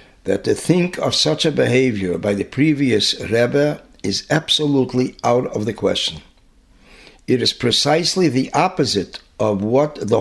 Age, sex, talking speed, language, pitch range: 60-79, male, 145 wpm, English, 100-135 Hz